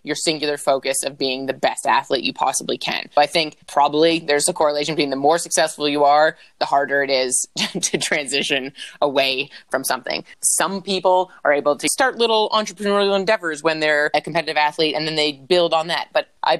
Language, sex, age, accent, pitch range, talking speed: English, female, 20-39, American, 135-165 Hz, 195 wpm